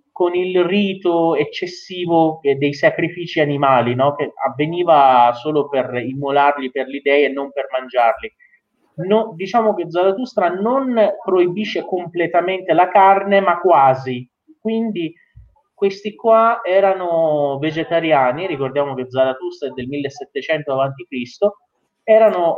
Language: Italian